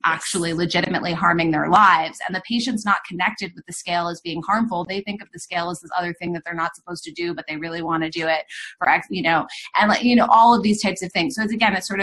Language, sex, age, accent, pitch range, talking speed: English, female, 30-49, American, 170-210 Hz, 285 wpm